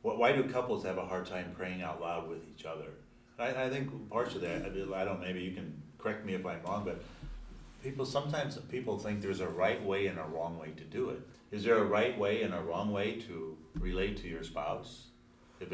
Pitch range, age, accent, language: 85-100 Hz, 40-59, American, English